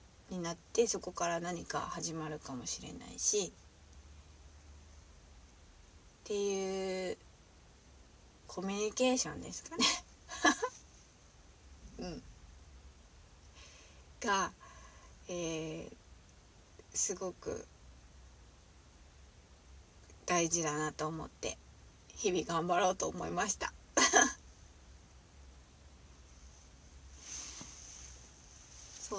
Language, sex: Japanese, female